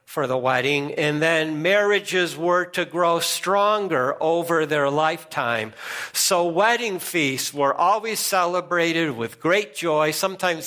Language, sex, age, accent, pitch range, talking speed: English, male, 50-69, American, 145-185 Hz, 130 wpm